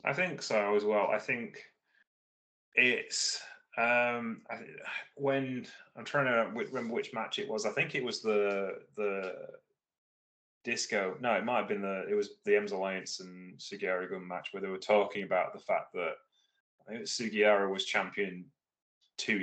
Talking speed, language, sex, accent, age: 165 wpm, English, male, British, 20-39